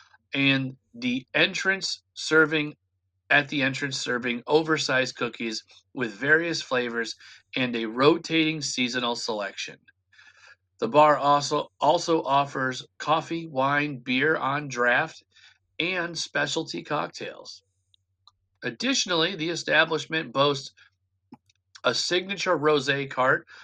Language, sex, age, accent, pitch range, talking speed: English, male, 40-59, American, 125-155 Hz, 100 wpm